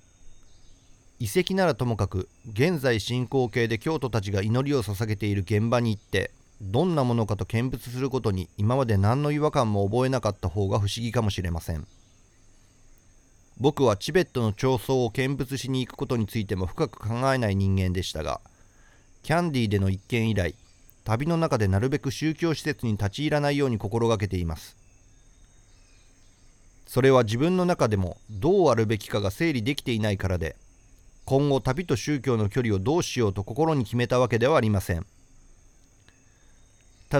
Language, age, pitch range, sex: Japanese, 40-59, 95-135 Hz, male